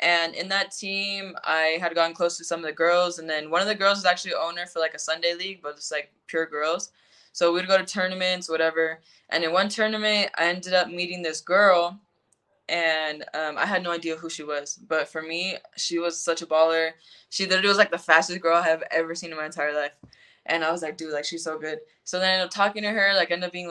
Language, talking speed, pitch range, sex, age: English, 255 wpm, 155-185 Hz, female, 10-29